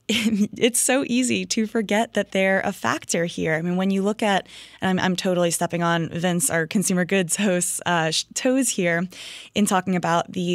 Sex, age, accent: female, 20-39, American